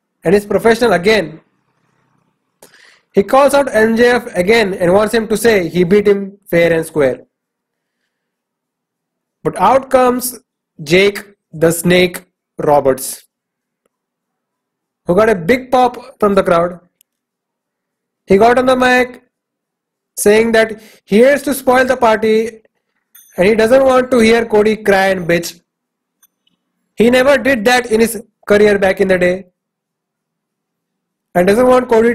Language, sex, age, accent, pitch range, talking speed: English, male, 20-39, Indian, 195-245 Hz, 135 wpm